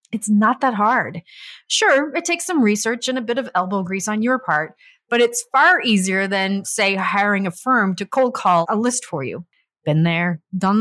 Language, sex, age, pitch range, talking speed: English, female, 30-49, 180-230 Hz, 205 wpm